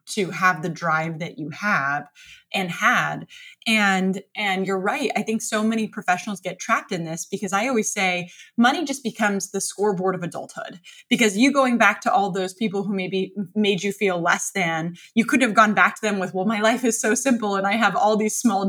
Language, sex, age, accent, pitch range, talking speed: English, female, 20-39, American, 180-225 Hz, 220 wpm